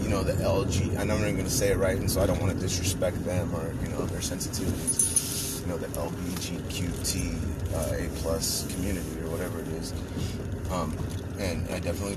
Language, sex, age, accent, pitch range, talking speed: English, male, 30-49, American, 90-120 Hz, 190 wpm